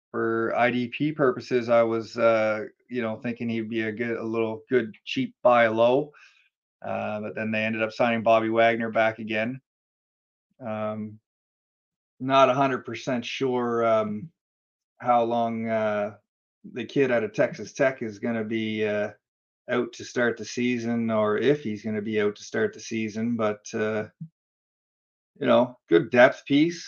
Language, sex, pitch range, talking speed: English, male, 110-130 Hz, 160 wpm